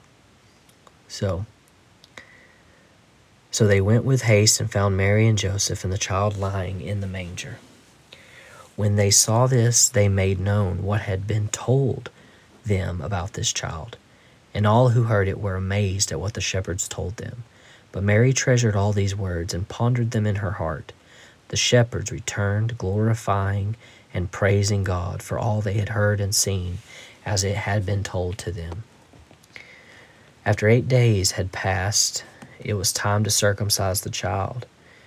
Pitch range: 100-115 Hz